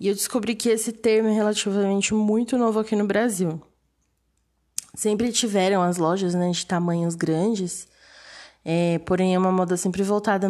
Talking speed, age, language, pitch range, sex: 155 wpm, 20-39, Portuguese, 185-225 Hz, female